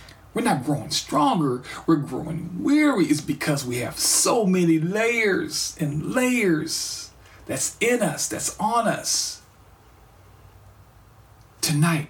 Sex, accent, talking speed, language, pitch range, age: male, American, 115 wpm, English, 130-195 Hz, 50-69